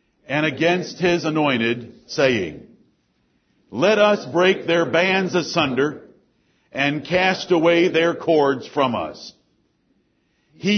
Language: English